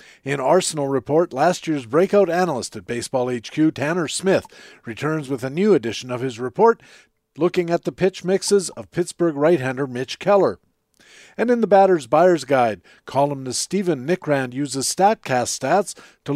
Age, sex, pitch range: 50-69, male, 135-175 Hz